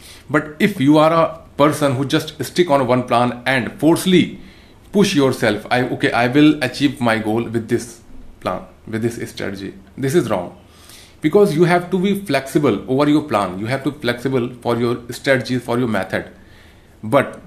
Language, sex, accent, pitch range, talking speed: Hindi, male, native, 105-145 Hz, 180 wpm